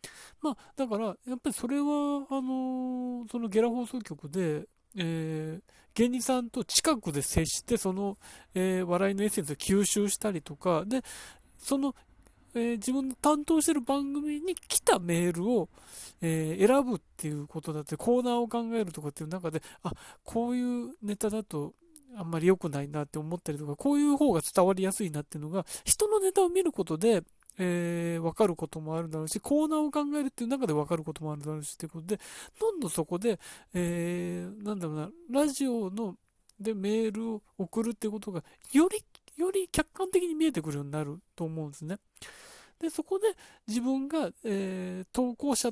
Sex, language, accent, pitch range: male, Japanese, native, 170-265 Hz